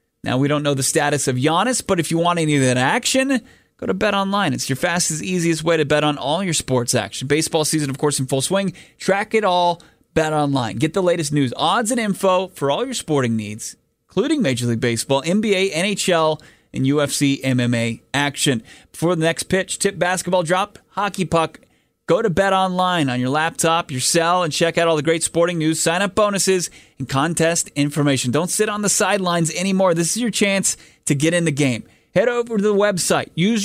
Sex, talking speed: male, 210 wpm